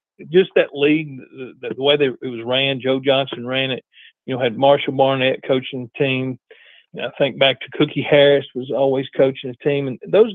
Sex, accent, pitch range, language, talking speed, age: male, American, 125-150 Hz, English, 210 wpm, 50-69